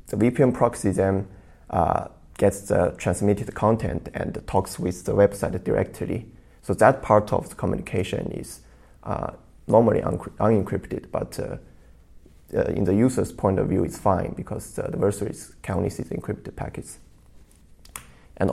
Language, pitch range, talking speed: English, 95-110 Hz, 150 wpm